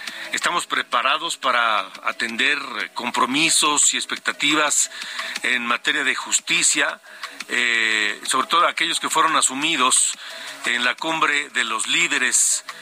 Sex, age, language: male, 50-69, Spanish